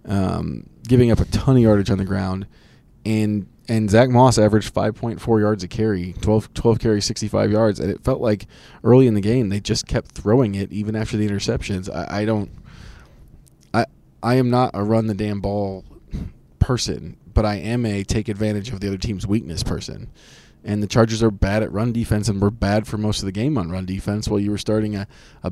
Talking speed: 225 wpm